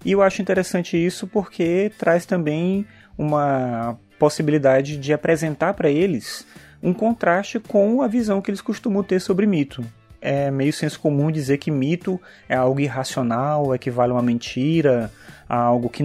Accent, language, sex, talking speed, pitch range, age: Brazilian, Portuguese, male, 155 wpm, 135-185 Hz, 30-49